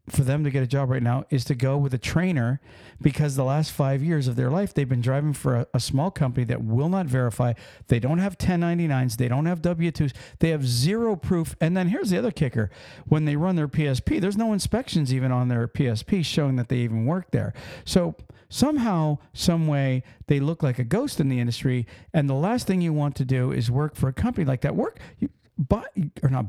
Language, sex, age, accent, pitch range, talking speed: English, male, 50-69, American, 130-175 Hz, 230 wpm